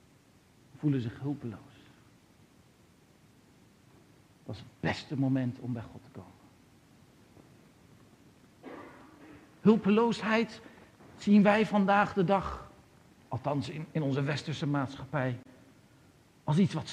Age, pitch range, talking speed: 60-79, 150-215 Hz, 95 wpm